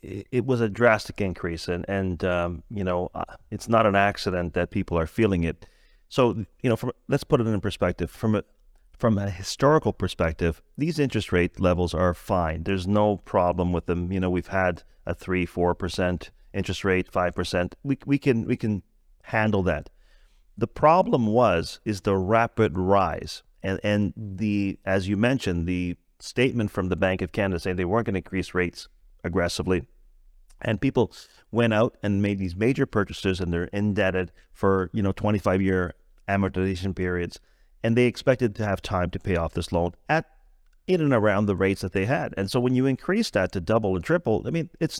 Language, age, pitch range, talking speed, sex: English, 30-49, 95-125 Hz, 190 wpm, male